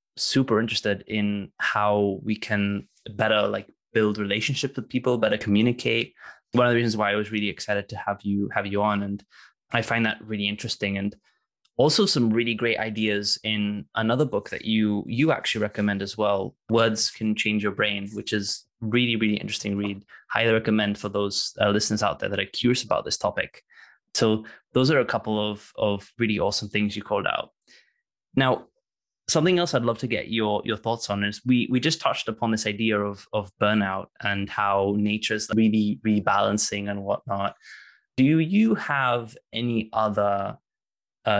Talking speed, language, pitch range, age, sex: 180 wpm, English, 105-115 Hz, 20-39, male